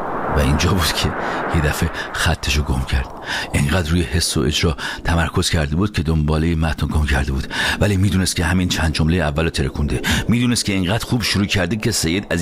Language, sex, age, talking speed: Persian, male, 50-69, 200 wpm